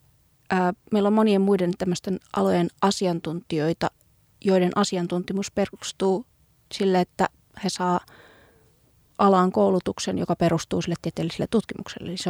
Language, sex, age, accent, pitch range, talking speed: Finnish, female, 30-49, native, 180-215 Hz, 105 wpm